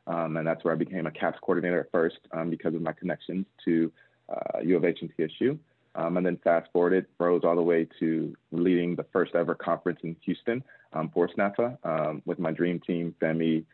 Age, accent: 20-39, American